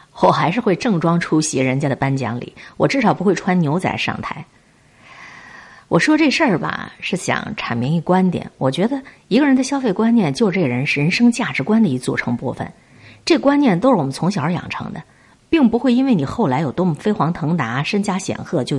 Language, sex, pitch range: Chinese, female, 145-230 Hz